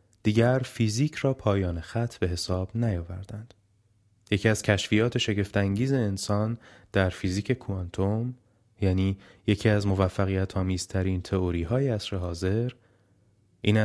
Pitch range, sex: 95-110 Hz, male